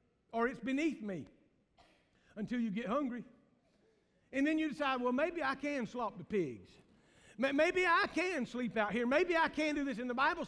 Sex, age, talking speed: male, 50-69, 190 wpm